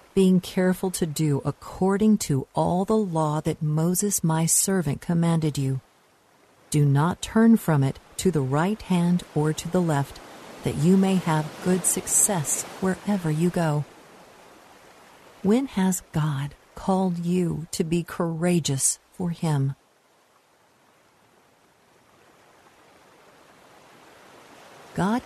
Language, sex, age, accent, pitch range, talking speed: English, female, 50-69, American, 155-195 Hz, 115 wpm